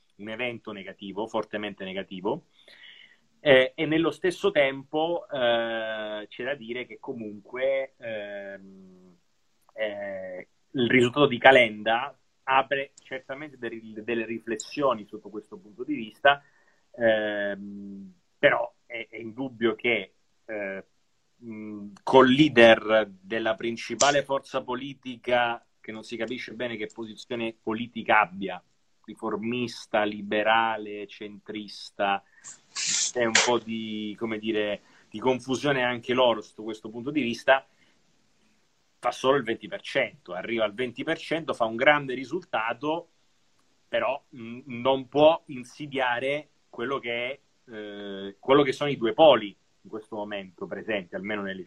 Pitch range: 105-130 Hz